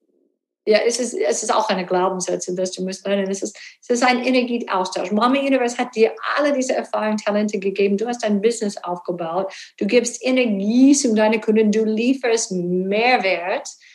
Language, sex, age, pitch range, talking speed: German, female, 50-69, 190-230 Hz, 175 wpm